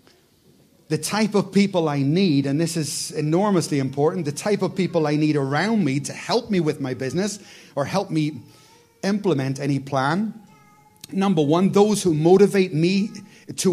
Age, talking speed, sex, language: 30-49, 165 wpm, male, English